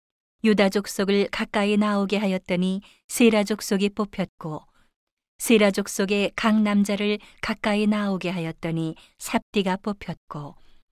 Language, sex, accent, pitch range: Korean, female, native, 185-210 Hz